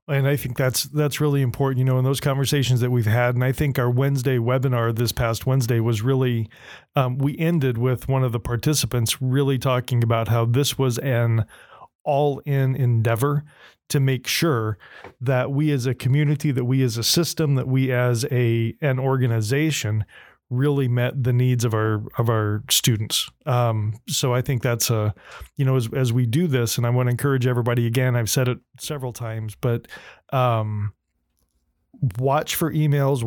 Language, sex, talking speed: English, male, 185 wpm